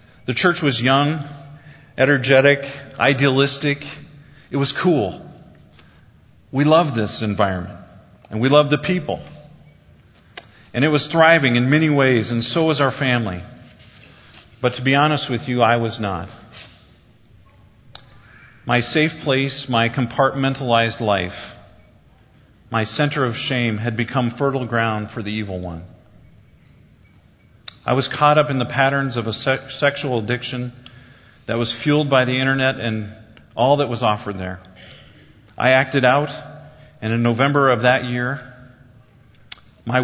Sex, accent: male, American